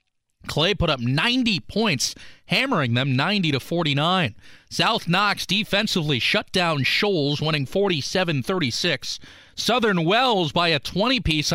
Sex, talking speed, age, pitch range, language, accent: male, 115 wpm, 30-49, 145-205 Hz, English, American